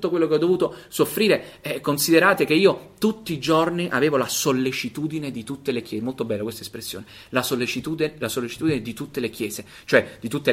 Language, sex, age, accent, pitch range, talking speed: Italian, male, 30-49, native, 115-140 Hz, 200 wpm